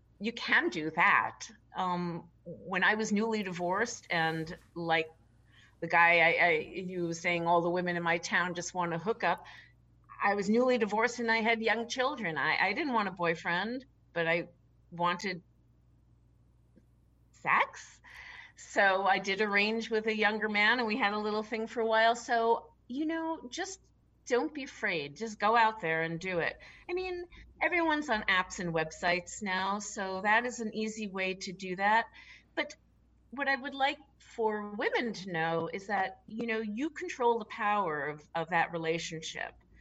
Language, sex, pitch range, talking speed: English, female, 170-230 Hz, 180 wpm